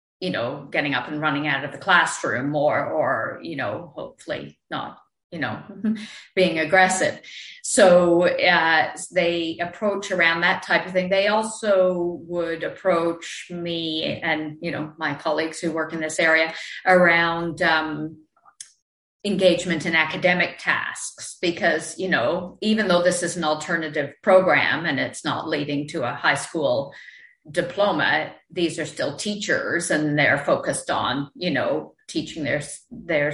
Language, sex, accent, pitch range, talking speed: English, female, American, 155-185 Hz, 150 wpm